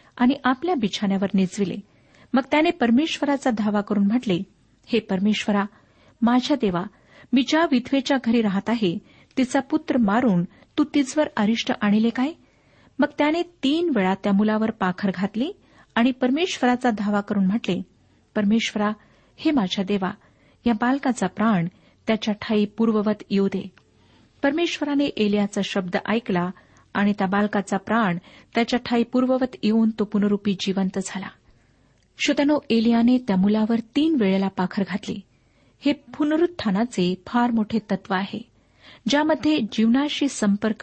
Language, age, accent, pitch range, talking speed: Marathi, 50-69, native, 200-255 Hz, 125 wpm